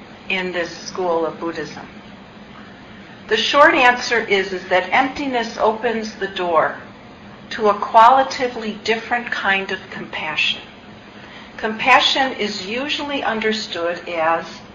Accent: American